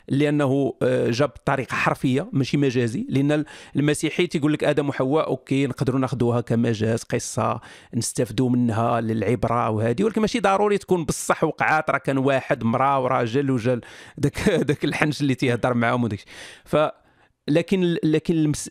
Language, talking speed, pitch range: Arabic, 135 wpm, 130-165 Hz